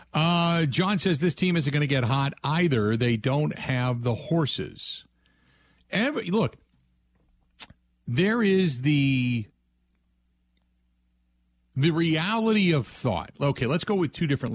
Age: 50-69